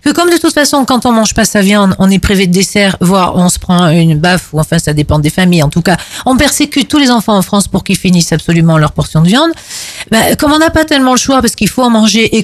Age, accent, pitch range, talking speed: 40-59, French, 190-265 Hz, 290 wpm